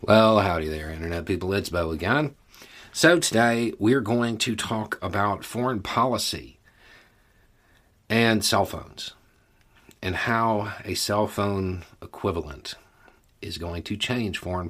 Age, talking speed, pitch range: 40-59, 125 wpm, 85-110 Hz